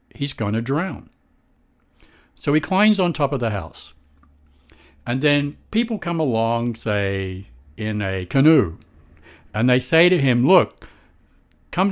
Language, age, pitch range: English, 60-79, 105-160 Hz